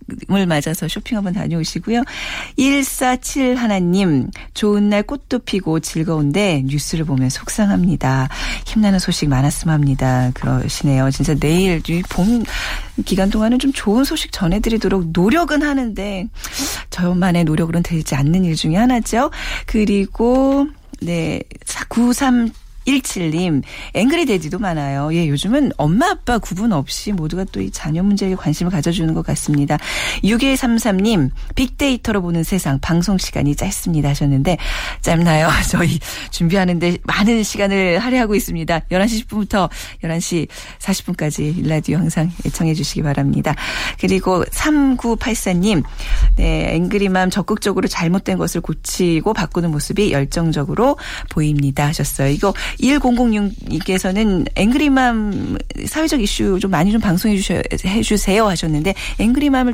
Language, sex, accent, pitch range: Korean, female, native, 160-225 Hz